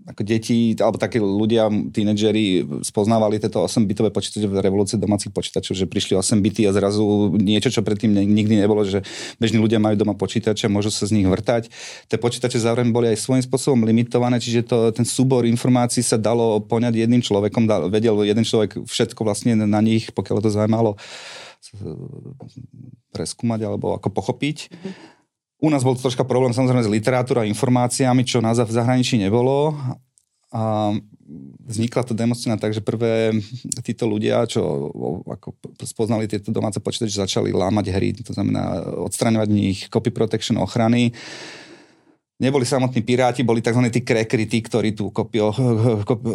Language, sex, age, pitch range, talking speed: Slovak, male, 30-49, 105-125 Hz, 160 wpm